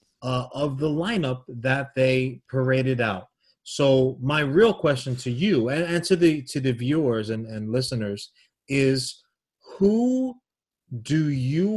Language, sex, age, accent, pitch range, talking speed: English, male, 30-49, American, 125-165 Hz, 145 wpm